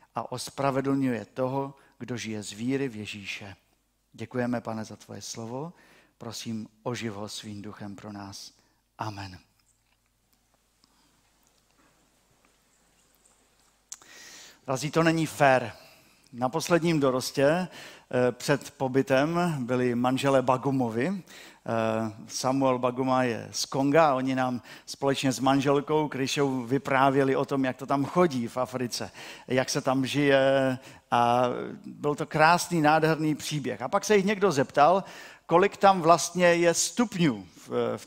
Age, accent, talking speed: 50-69, native, 120 wpm